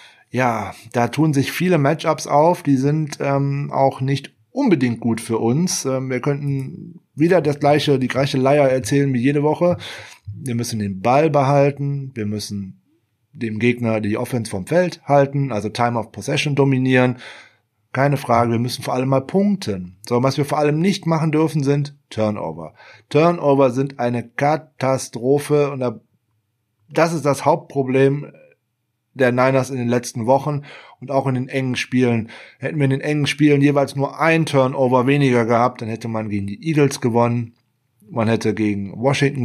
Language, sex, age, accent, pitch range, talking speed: German, male, 30-49, German, 115-145 Hz, 165 wpm